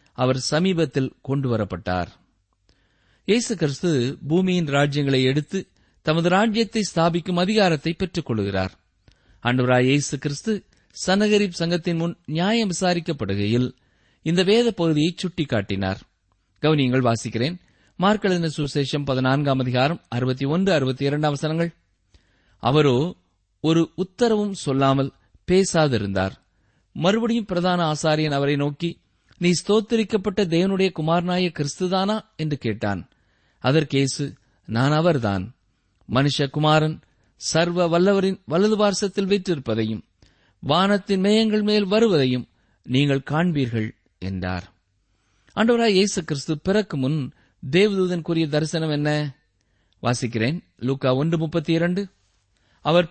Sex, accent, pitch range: male, native, 120-180 Hz